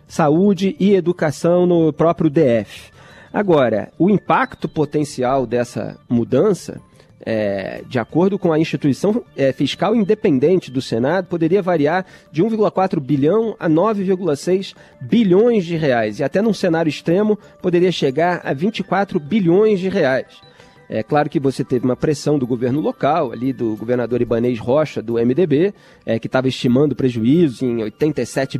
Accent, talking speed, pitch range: Brazilian, 140 wpm, 130-185 Hz